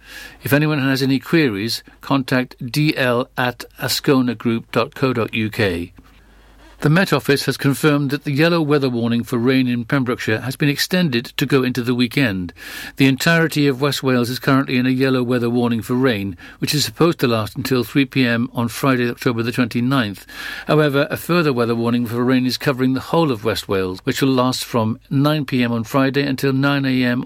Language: English